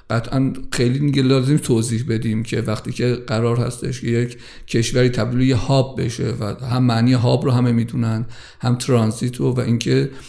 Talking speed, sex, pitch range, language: 165 wpm, male, 120-135 Hz, Persian